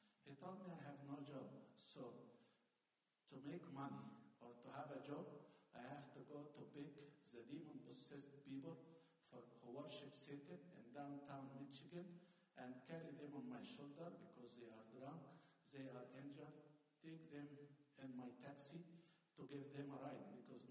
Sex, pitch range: male, 135-165 Hz